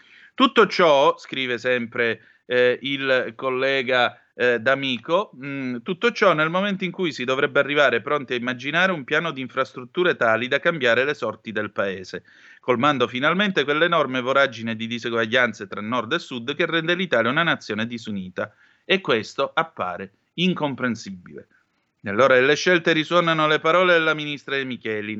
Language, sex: Italian, male